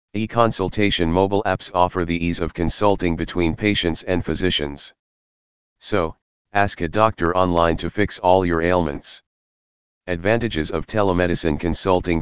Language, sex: English, male